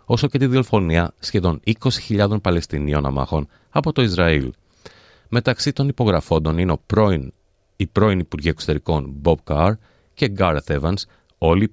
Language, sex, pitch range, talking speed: Greek, male, 80-110 Hz, 140 wpm